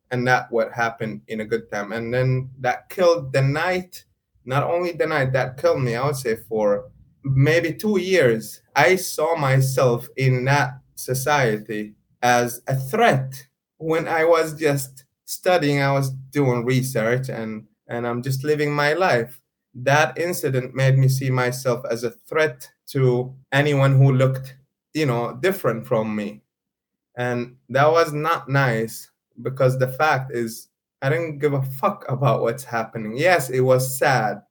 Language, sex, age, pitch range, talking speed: English, male, 20-39, 120-150 Hz, 160 wpm